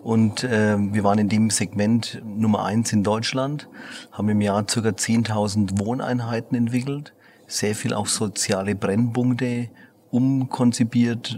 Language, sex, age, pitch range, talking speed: German, male, 40-59, 105-120 Hz, 125 wpm